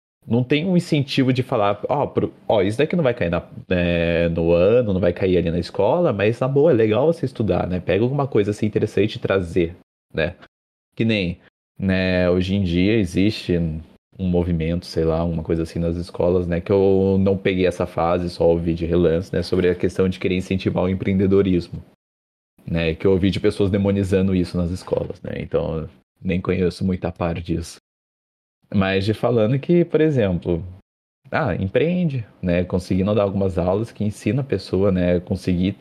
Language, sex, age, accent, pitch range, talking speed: Portuguese, male, 30-49, Brazilian, 85-100 Hz, 190 wpm